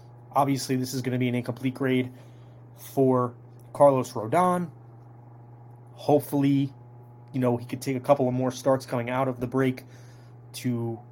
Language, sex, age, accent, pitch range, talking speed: English, male, 20-39, American, 120-135 Hz, 155 wpm